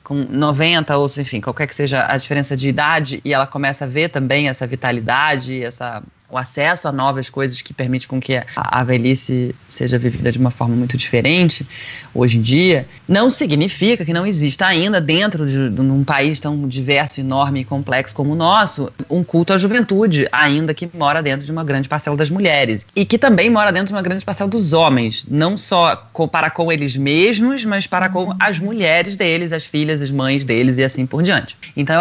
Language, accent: Portuguese, Brazilian